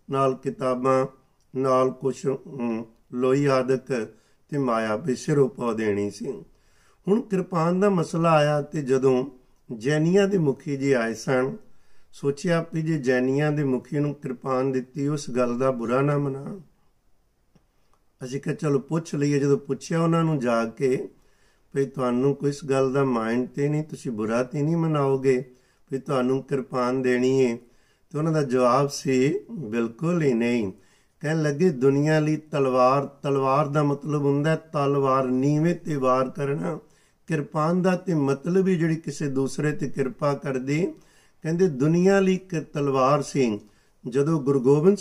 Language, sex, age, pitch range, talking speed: Punjabi, male, 50-69, 130-155 Hz, 140 wpm